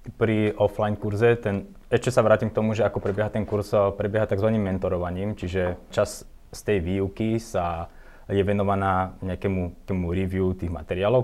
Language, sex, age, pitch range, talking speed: Slovak, male, 20-39, 85-100 Hz, 150 wpm